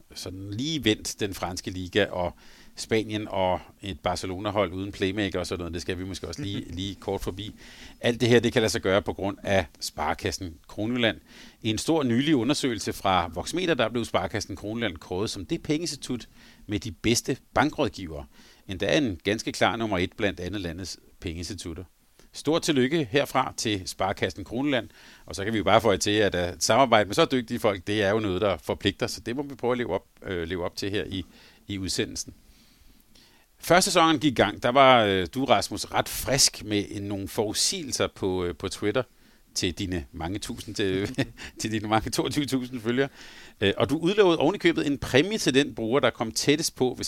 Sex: male